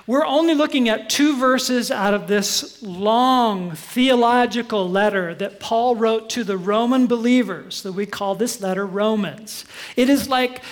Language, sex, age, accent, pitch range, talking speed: English, male, 40-59, American, 210-270 Hz, 155 wpm